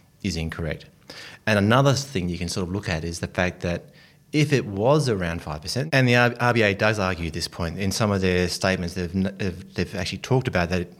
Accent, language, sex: Australian, English, male